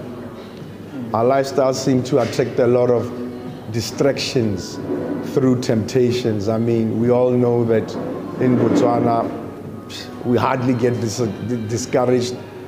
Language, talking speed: English, 115 wpm